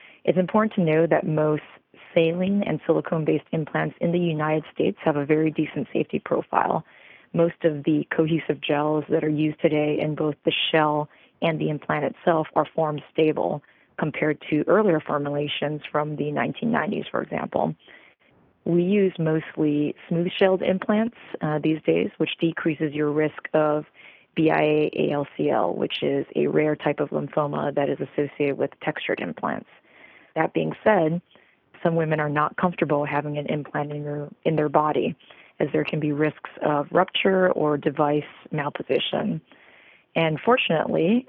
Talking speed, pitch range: 150 wpm, 150-170 Hz